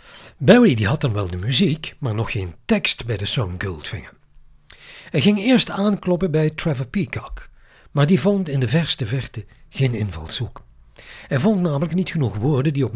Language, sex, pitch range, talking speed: Dutch, male, 115-160 Hz, 180 wpm